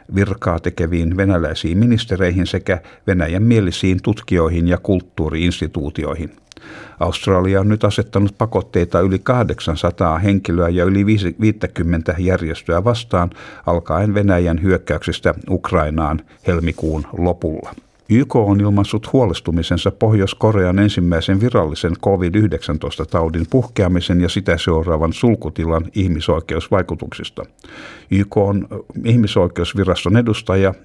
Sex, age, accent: male, 60-79, native